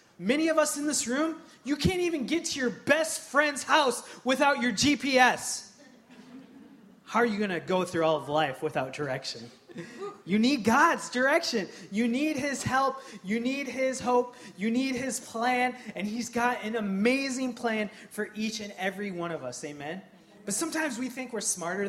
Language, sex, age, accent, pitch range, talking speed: English, male, 20-39, American, 160-230 Hz, 180 wpm